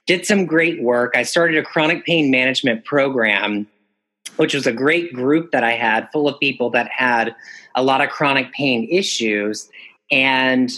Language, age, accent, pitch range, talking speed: English, 30-49, American, 120-155 Hz, 175 wpm